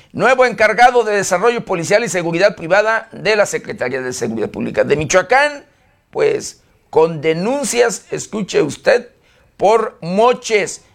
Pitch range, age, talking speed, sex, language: 165-230 Hz, 50-69, 125 wpm, male, Spanish